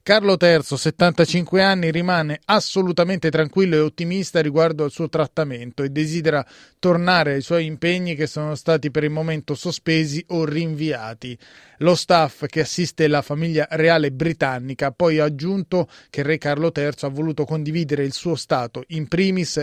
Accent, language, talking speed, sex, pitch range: native, Italian, 160 wpm, male, 150-175 Hz